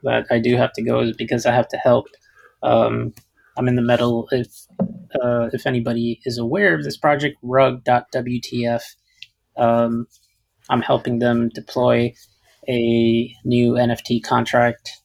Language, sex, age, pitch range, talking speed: English, male, 20-39, 115-130 Hz, 145 wpm